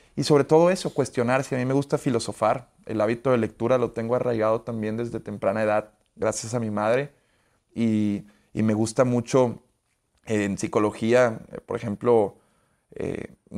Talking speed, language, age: 170 wpm, English, 30-49